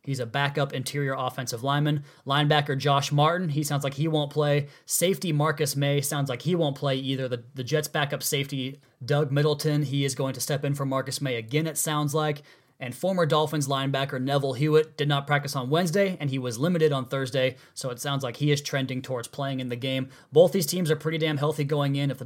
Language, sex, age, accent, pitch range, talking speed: English, male, 20-39, American, 140-160 Hz, 225 wpm